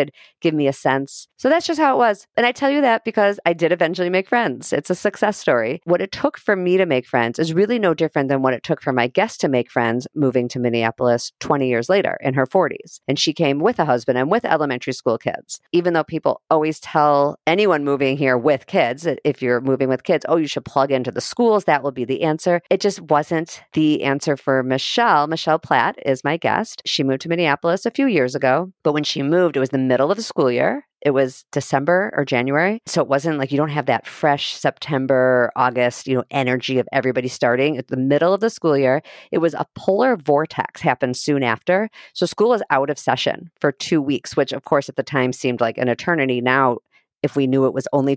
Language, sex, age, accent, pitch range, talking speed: English, female, 40-59, American, 130-180 Hz, 235 wpm